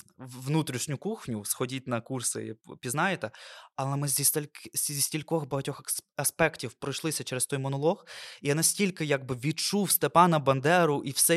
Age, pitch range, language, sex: 20-39, 130-175 Hz, Ukrainian, male